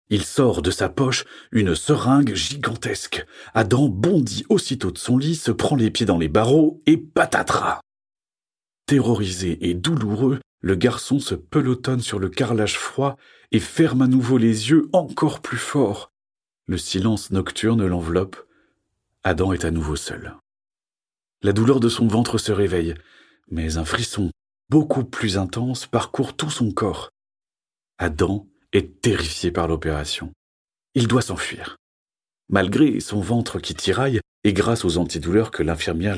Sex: male